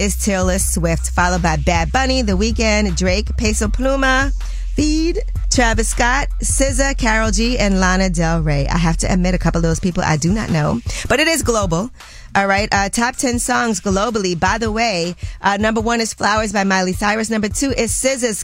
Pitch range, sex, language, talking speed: 170-220 Hz, female, English, 200 wpm